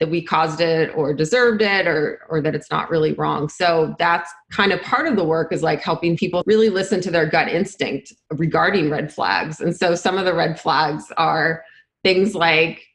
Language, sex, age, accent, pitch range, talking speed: English, female, 30-49, American, 160-195 Hz, 210 wpm